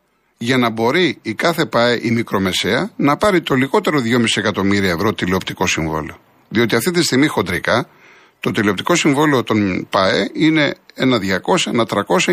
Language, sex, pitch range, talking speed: Greek, male, 120-175 Hz, 155 wpm